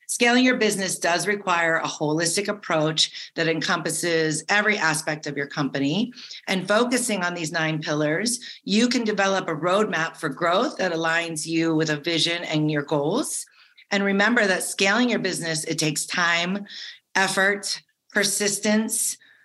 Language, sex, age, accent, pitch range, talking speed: English, female, 40-59, American, 160-215 Hz, 150 wpm